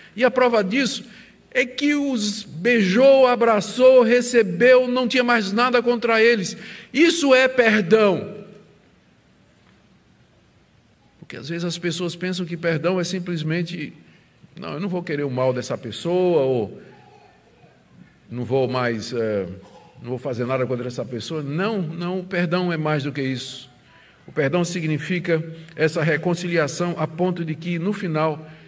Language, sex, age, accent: Portuguese, male, 50-69, Brazilian